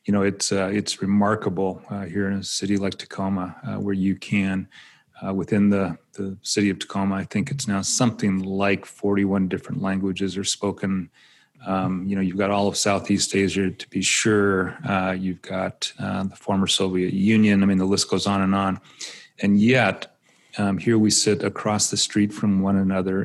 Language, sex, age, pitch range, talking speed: English, male, 40-59, 95-105 Hz, 195 wpm